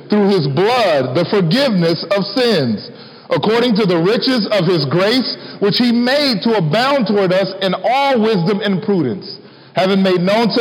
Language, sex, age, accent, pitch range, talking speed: English, male, 40-59, American, 170-230 Hz, 170 wpm